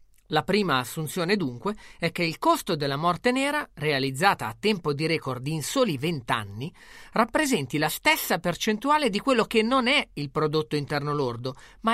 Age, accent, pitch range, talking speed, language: 30-49, native, 145-235 Hz, 165 wpm, Italian